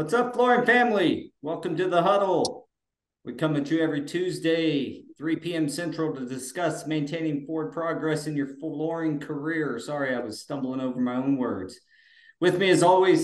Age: 40-59